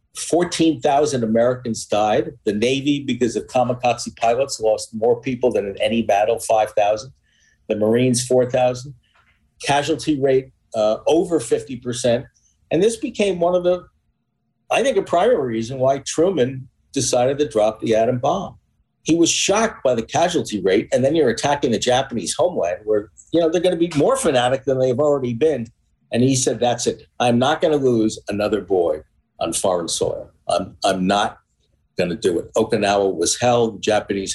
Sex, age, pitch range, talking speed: male, 50-69, 105-130 Hz, 170 wpm